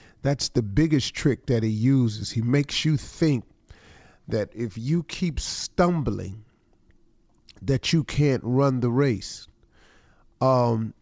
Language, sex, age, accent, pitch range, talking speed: English, male, 40-59, American, 110-145 Hz, 125 wpm